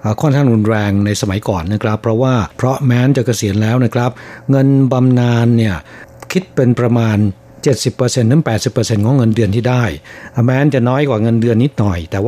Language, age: Thai, 60-79